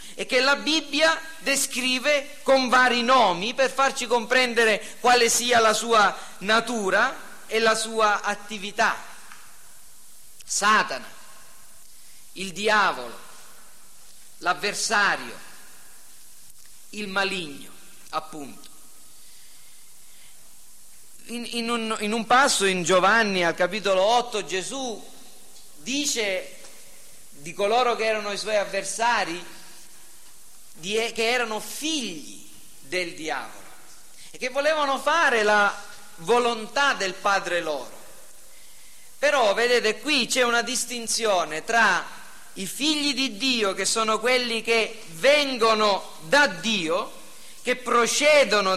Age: 40-59